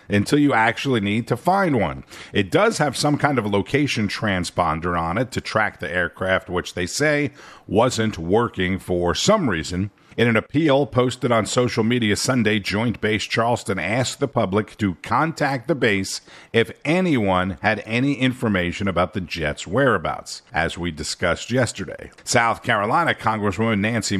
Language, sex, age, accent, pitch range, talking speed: English, male, 50-69, American, 100-135 Hz, 160 wpm